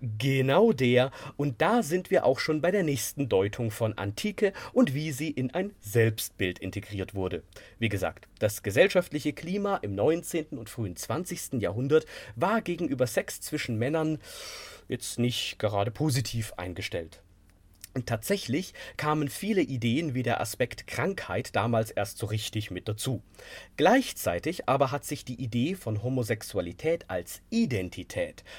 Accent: German